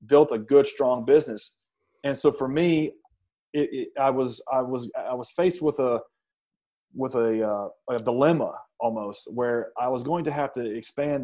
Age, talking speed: 30-49, 180 wpm